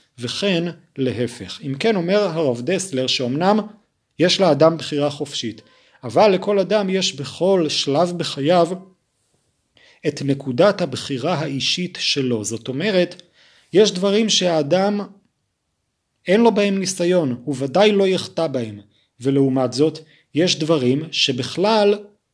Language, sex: Hebrew, male